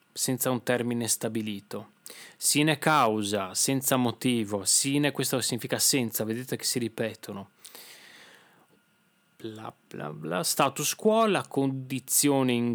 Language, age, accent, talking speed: Italian, 20-39, native, 100 wpm